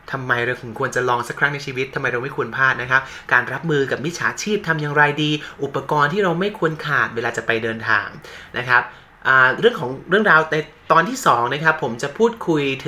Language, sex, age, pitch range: Thai, male, 20-39, 125-165 Hz